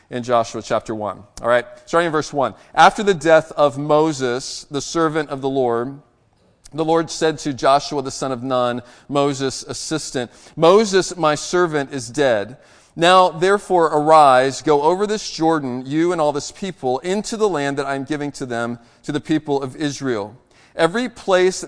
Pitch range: 135-165 Hz